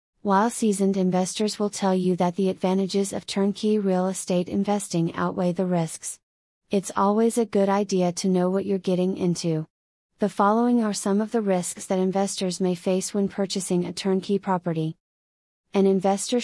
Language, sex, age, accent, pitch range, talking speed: English, female, 30-49, American, 175-200 Hz, 170 wpm